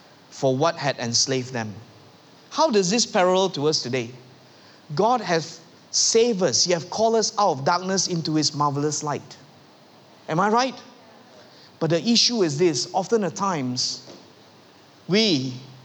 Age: 20-39